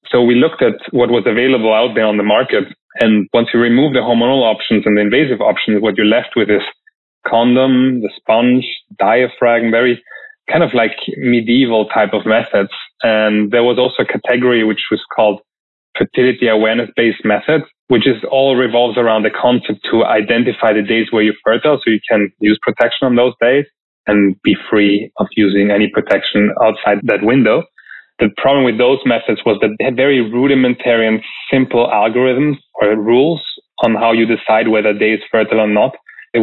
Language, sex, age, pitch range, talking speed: English, male, 20-39, 105-125 Hz, 185 wpm